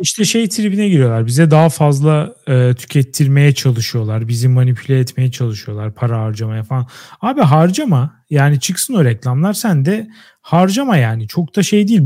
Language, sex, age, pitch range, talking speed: Turkish, male, 40-59, 125-190 Hz, 155 wpm